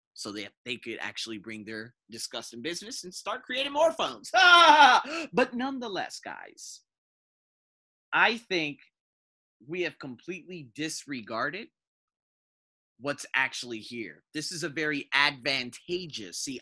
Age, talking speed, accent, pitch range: 20-39, 115 wpm, American, 120-175 Hz